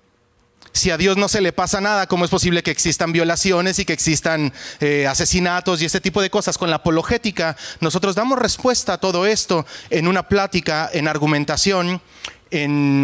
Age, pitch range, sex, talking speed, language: 30-49, 140-175 Hz, male, 180 wpm, Spanish